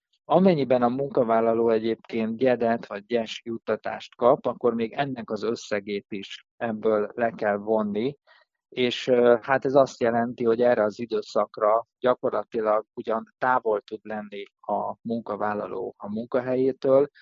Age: 50-69